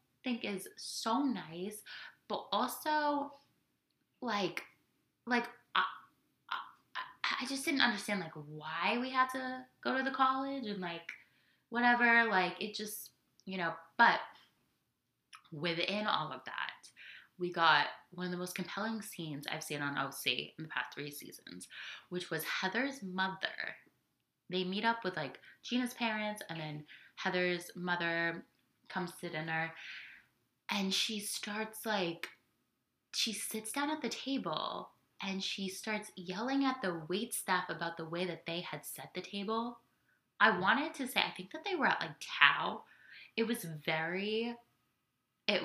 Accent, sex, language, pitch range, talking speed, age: American, female, English, 165-225 Hz, 150 wpm, 10-29